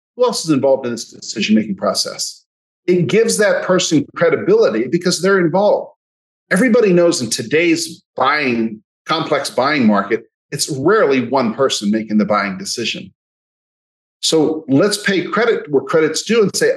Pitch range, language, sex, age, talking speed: 115-185 Hz, English, male, 40-59, 145 wpm